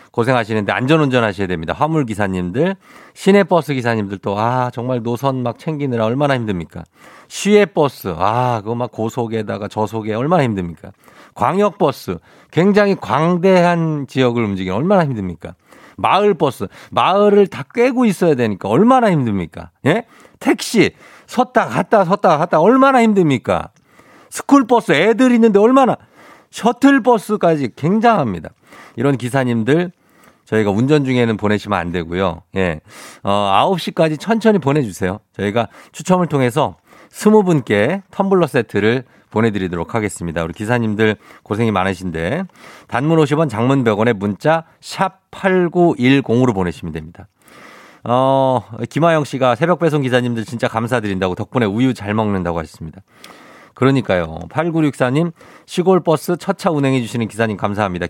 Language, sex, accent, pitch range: Korean, male, native, 105-175 Hz